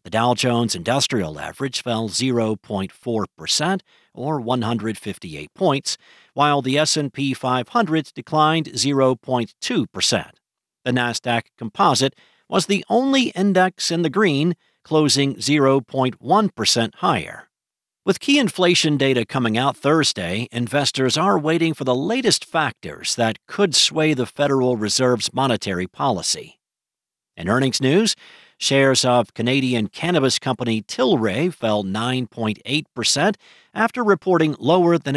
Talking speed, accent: 115 wpm, American